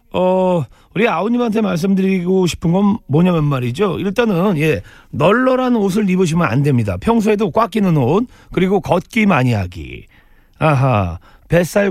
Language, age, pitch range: Korean, 40-59, 155-215 Hz